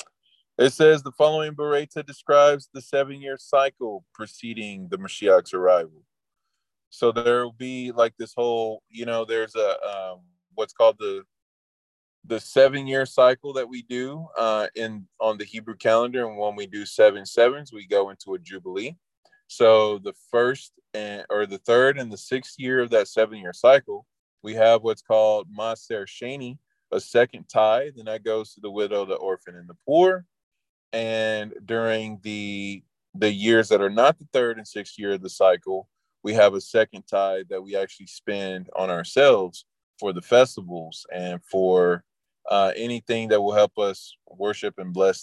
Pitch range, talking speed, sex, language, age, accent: 100-125 Hz, 170 wpm, male, English, 20-39, American